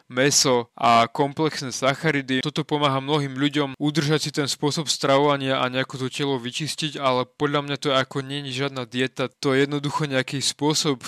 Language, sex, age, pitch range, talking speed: Slovak, male, 20-39, 125-145 Hz, 175 wpm